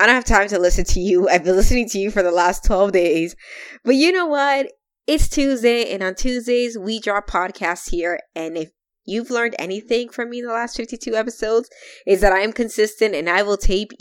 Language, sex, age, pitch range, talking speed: English, female, 20-39, 175-230 Hz, 220 wpm